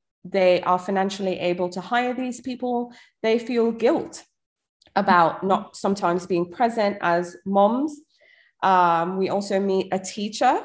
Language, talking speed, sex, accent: English, 135 wpm, female, British